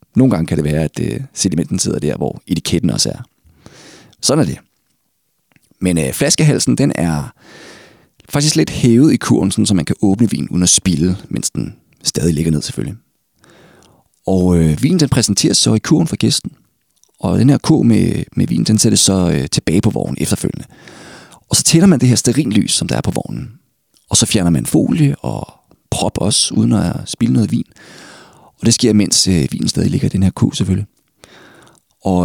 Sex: male